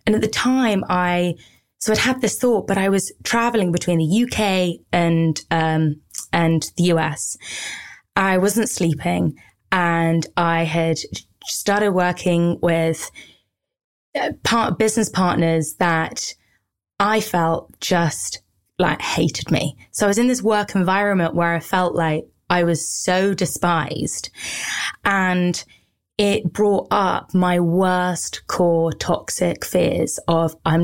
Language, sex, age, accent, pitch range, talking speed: English, female, 20-39, British, 165-195 Hz, 130 wpm